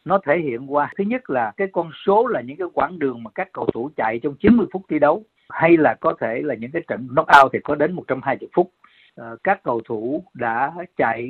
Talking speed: 240 wpm